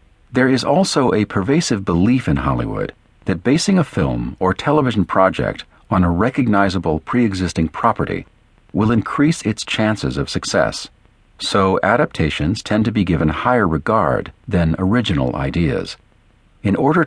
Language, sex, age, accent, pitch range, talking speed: English, male, 50-69, American, 80-115 Hz, 135 wpm